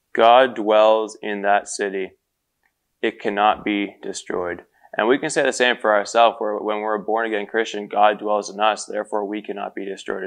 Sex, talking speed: male, 185 wpm